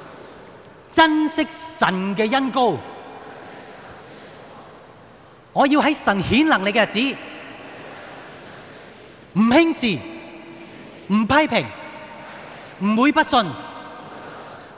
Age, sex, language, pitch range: 30-49, male, Chinese, 135-165 Hz